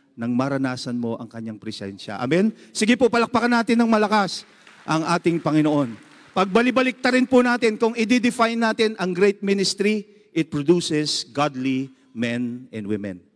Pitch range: 215-275 Hz